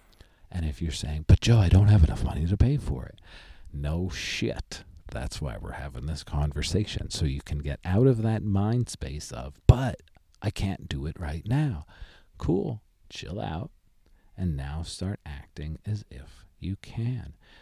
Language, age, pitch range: English, 50-69, 75-110 Hz